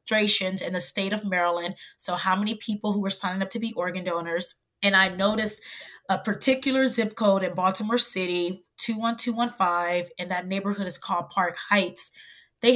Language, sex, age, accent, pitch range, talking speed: English, female, 20-39, American, 180-215 Hz, 170 wpm